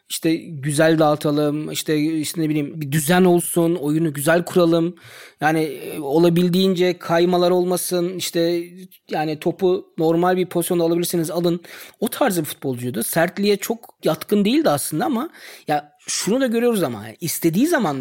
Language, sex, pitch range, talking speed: Turkish, male, 135-180 Hz, 150 wpm